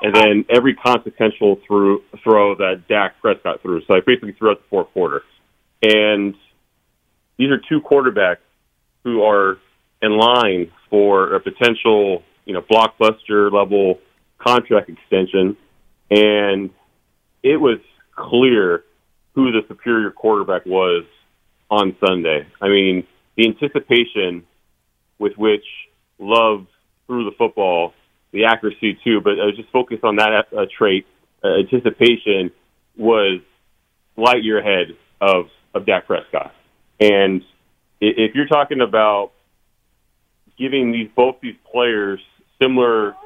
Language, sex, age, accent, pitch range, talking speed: English, male, 30-49, American, 100-120 Hz, 120 wpm